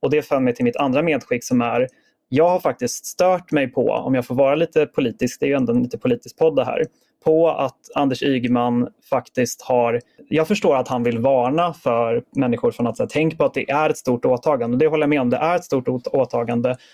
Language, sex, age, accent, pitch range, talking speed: Swedish, male, 30-49, native, 125-160 Hz, 235 wpm